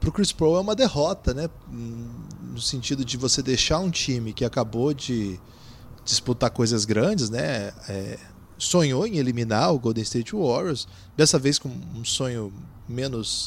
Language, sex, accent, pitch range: Portuguese, male, Brazilian, 115-160 Hz